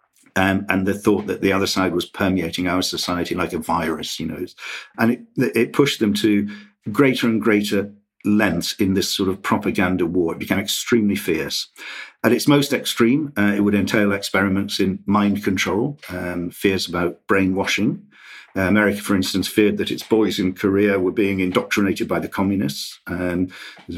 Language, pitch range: English, 95-110 Hz